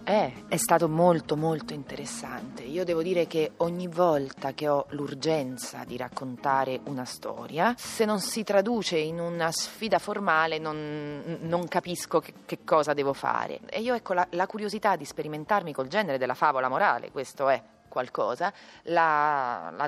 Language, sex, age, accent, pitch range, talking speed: Italian, female, 30-49, native, 140-195 Hz, 155 wpm